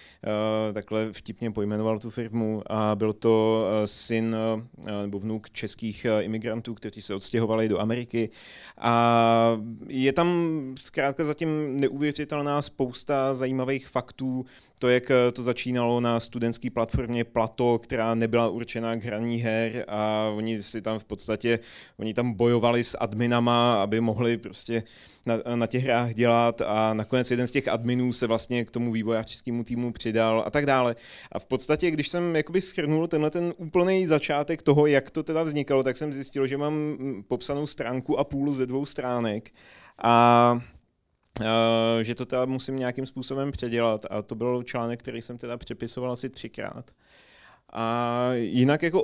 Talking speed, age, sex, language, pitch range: 150 wpm, 30-49, male, Czech, 115-135 Hz